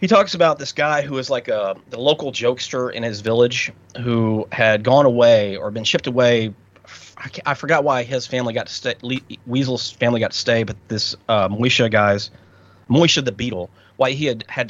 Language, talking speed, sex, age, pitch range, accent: German, 210 wpm, male, 30-49, 100-145 Hz, American